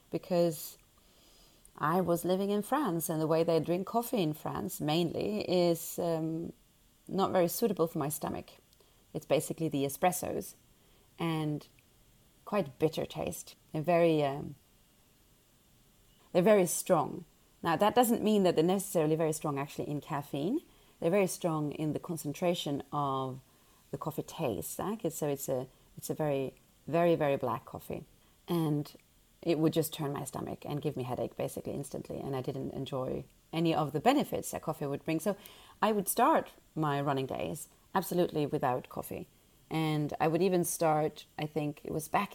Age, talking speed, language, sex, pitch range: 30-49, 160 wpm, English, female, 145-180 Hz